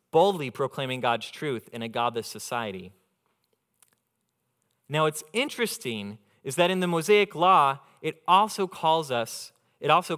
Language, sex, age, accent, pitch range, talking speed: English, male, 30-49, American, 115-160 Hz, 135 wpm